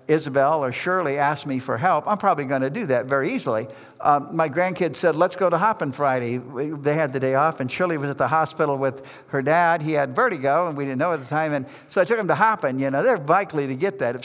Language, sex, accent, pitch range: English, male, American, 135-175 Hz